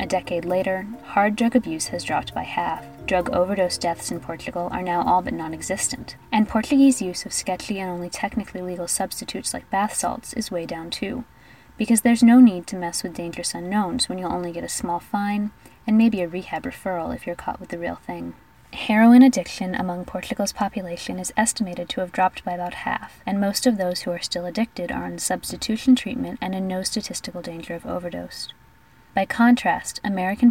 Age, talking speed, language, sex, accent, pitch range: 20-39, 195 wpm, English, female, American, 170-215 Hz